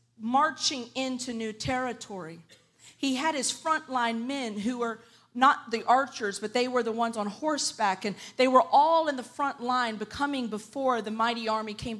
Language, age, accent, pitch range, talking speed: English, 40-59, American, 235-300 Hz, 175 wpm